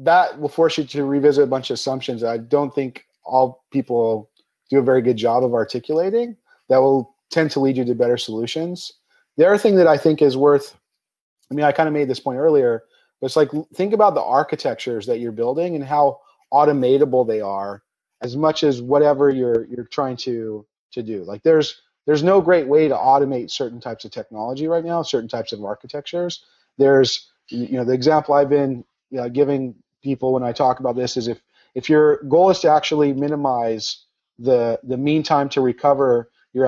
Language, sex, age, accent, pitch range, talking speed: English, male, 30-49, American, 125-155 Hz, 205 wpm